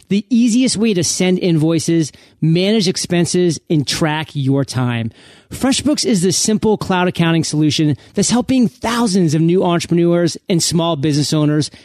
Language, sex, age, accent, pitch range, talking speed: English, male, 30-49, American, 155-215 Hz, 145 wpm